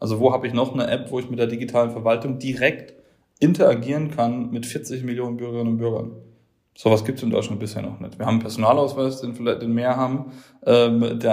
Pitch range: 115-130 Hz